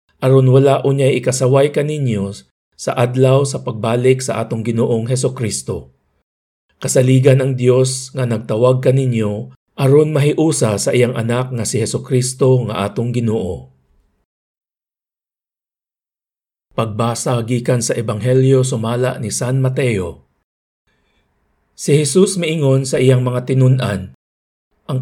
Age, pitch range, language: 50-69, 110-130 Hz, Filipino